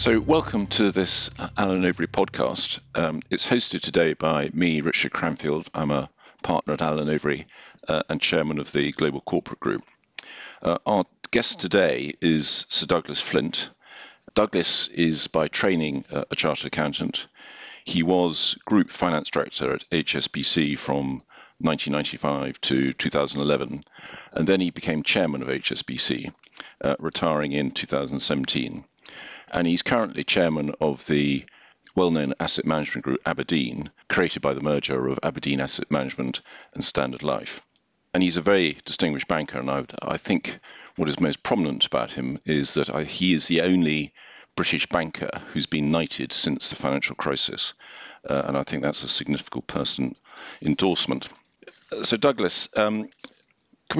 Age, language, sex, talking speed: 50-69, English, male, 145 wpm